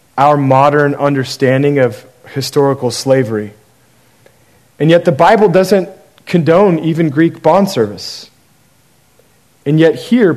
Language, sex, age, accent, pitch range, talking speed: English, male, 40-59, American, 125-165 Hz, 110 wpm